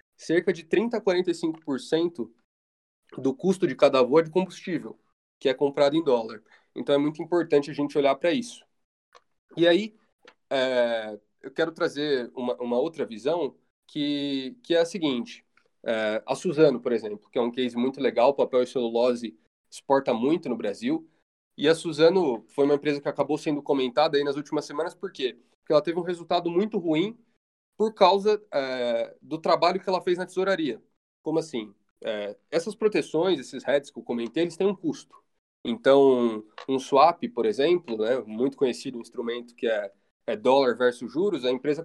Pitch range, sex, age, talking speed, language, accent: 130-175 Hz, male, 20-39, 175 wpm, Portuguese, Brazilian